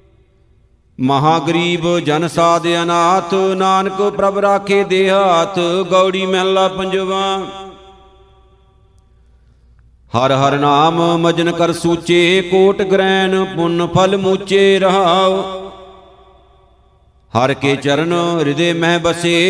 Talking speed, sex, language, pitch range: 90 wpm, male, Punjabi, 165-190 Hz